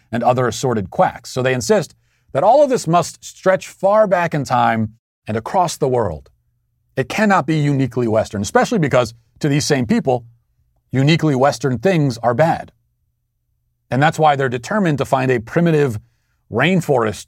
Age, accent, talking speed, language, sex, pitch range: 40-59, American, 165 wpm, English, male, 115-150 Hz